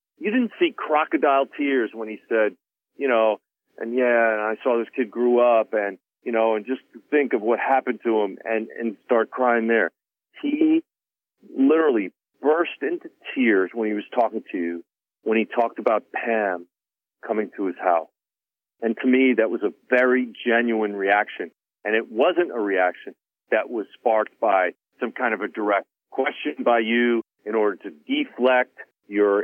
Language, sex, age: English, male, 40-59